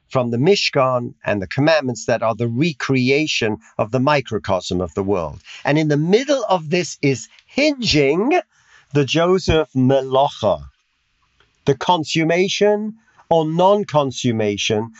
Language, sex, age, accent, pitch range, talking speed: English, male, 50-69, British, 130-185 Hz, 125 wpm